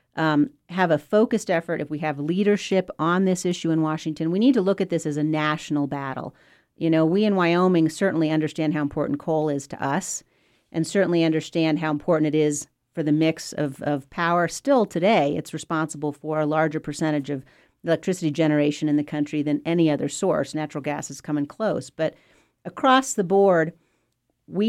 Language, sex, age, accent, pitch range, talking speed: English, female, 40-59, American, 150-175 Hz, 190 wpm